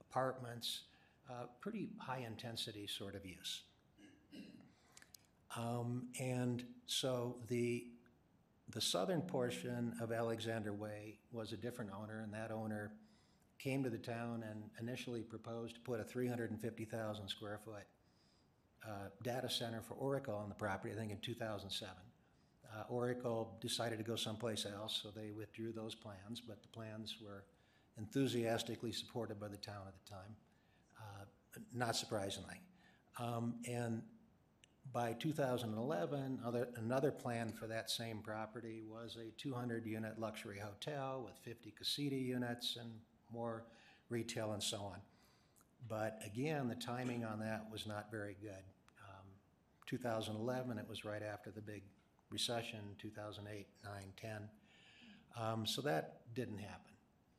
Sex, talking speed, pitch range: male, 135 wpm, 105-120 Hz